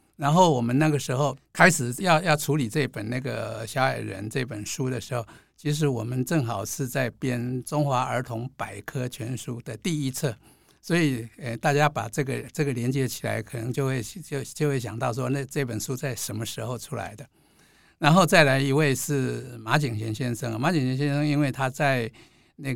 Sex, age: male, 60-79